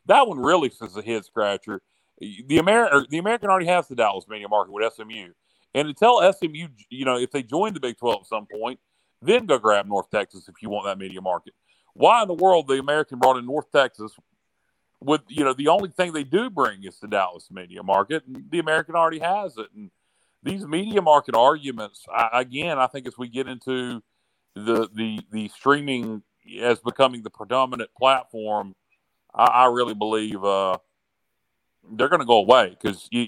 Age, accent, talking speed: 40-59, American, 190 wpm